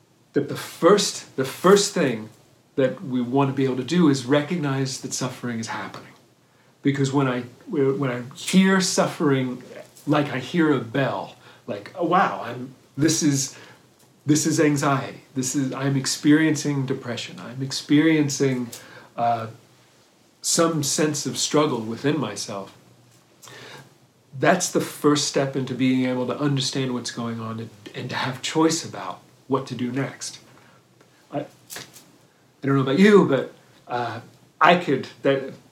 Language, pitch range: English, 125-150 Hz